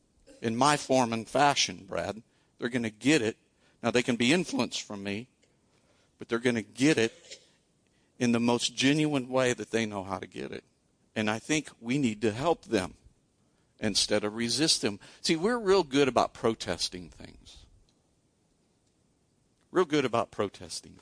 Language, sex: English, male